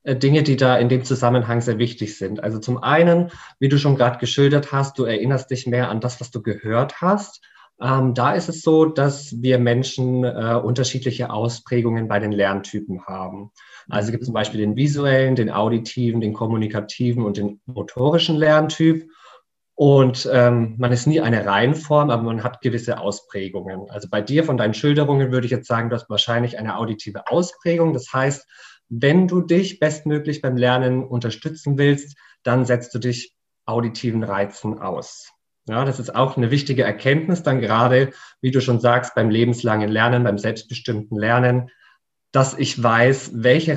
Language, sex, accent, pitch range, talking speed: German, male, German, 115-140 Hz, 175 wpm